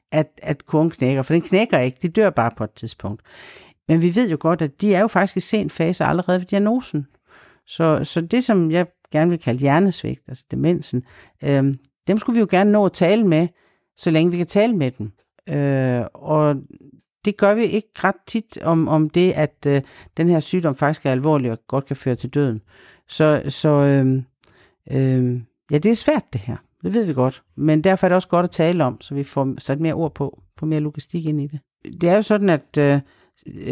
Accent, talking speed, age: native, 220 wpm, 60-79